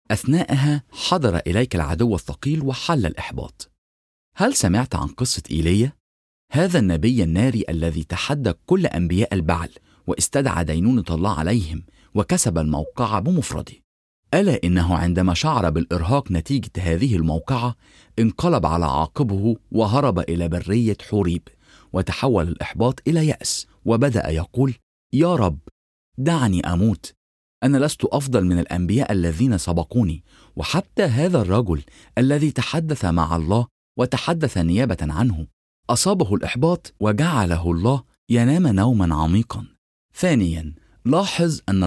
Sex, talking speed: male, 115 wpm